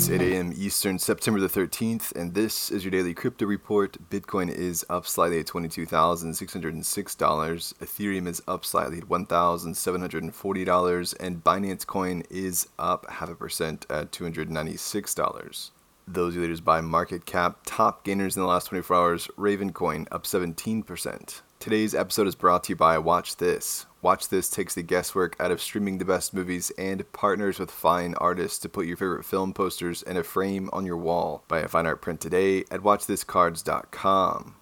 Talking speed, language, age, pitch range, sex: 200 wpm, English, 20-39, 85-95 Hz, male